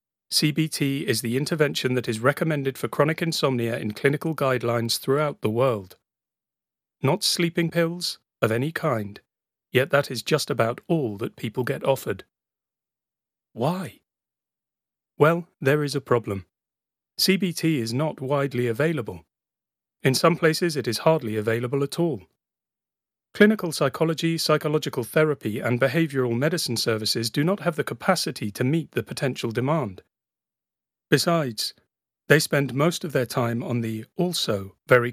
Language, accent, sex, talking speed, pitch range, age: English, British, male, 140 wpm, 120-160 Hz, 40-59